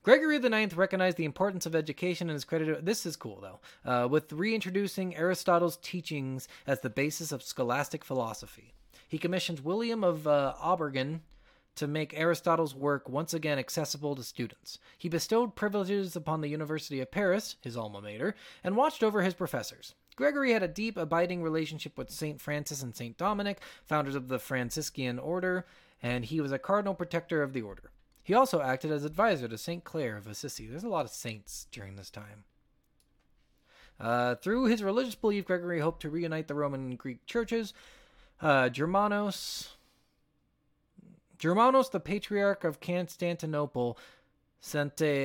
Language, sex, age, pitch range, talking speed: English, male, 30-49, 135-180 Hz, 160 wpm